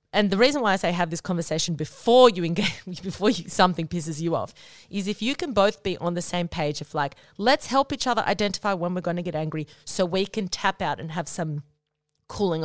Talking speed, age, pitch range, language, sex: 235 wpm, 30-49, 165-220 Hz, English, female